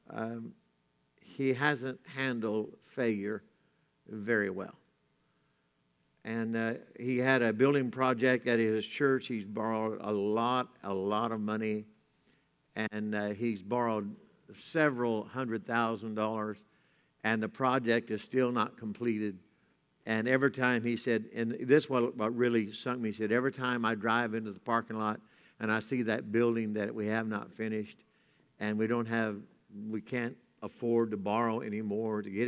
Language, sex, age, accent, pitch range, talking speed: English, male, 60-79, American, 110-125 Hz, 155 wpm